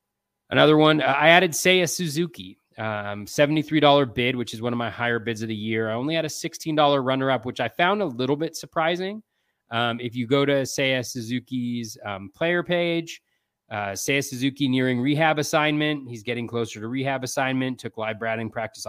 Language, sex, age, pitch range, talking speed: English, male, 30-49, 115-150 Hz, 185 wpm